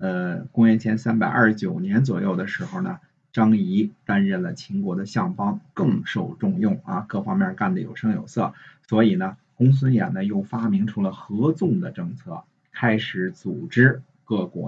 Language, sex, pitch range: Chinese, male, 110-185 Hz